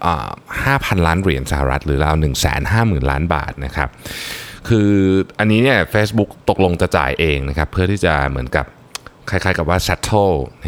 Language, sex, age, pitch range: Thai, male, 20-39, 75-100 Hz